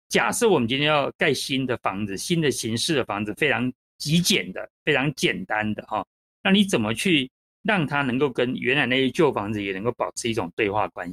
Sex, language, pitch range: male, Chinese, 120-190 Hz